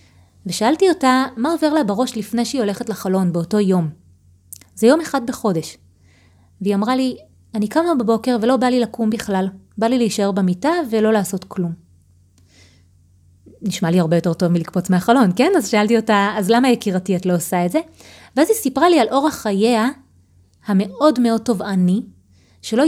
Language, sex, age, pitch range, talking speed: Hebrew, female, 30-49, 170-245 Hz, 170 wpm